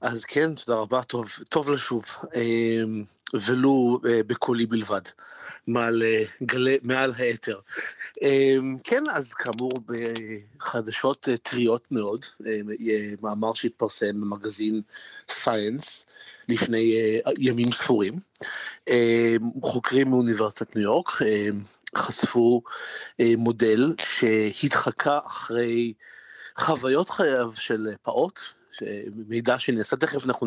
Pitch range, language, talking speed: 110-130 Hz, Hebrew, 85 wpm